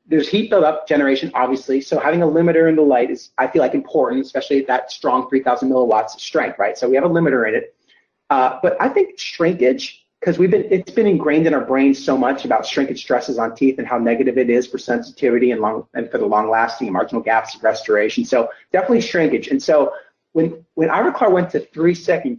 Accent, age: American, 30-49